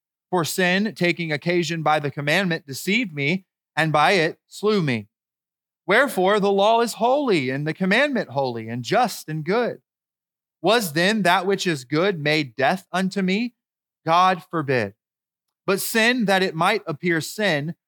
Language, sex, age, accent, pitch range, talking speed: English, male, 30-49, American, 130-175 Hz, 155 wpm